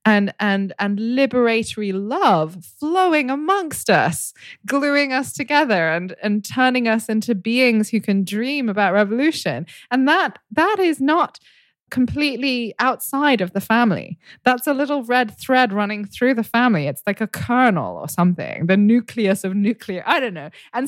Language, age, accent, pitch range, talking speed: English, 20-39, British, 185-260 Hz, 160 wpm